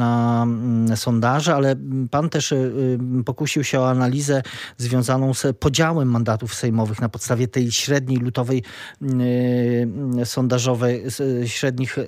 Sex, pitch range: male, 120-135 Hz